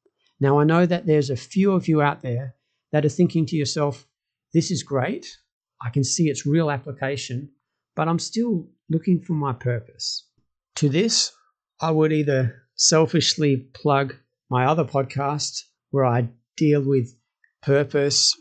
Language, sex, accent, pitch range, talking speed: English, male, Australian, 130-160 Hz, 155 wpm